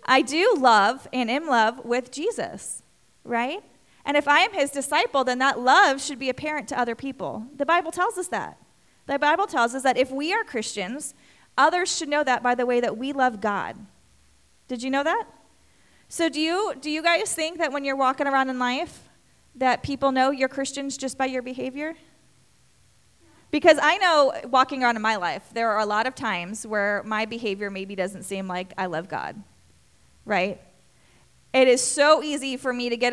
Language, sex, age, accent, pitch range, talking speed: English, female, 30-49, American, 235-290 Hz, 195 wpm